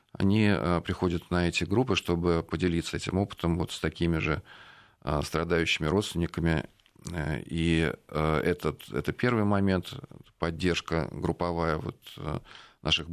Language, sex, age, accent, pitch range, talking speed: Russian, male, 40-59, native, 80-95 Hz, 95 wpm